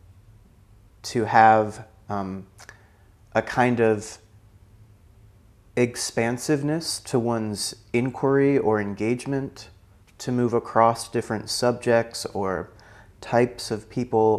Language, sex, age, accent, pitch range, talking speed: English, male, 30-49, American, 105-125 Hz, 90 wpm